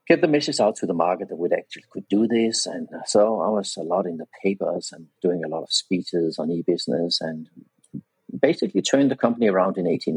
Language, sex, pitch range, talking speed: English, male, 85-120 Hz, 225 wpm